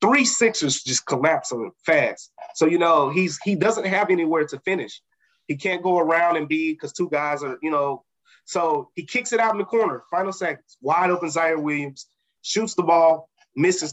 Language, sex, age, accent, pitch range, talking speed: English, male, 20-39, American, 140-180 Hz, 200 wpm